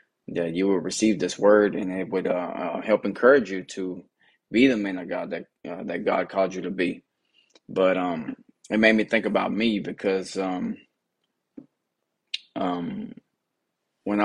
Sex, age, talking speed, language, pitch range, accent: male, 20-39, 160 wpm, English, 95-105 Hz, American